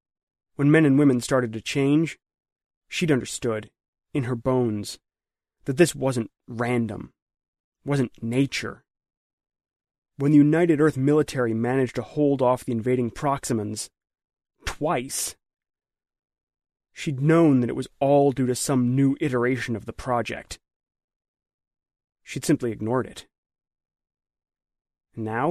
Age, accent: 30-49, American